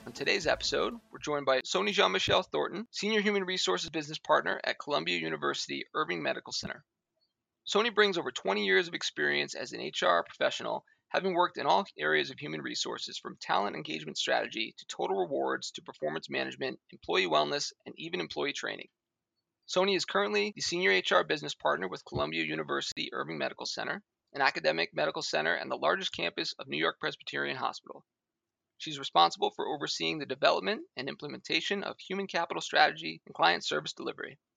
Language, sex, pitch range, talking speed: English, male, 110-185 Hz, 170 wpm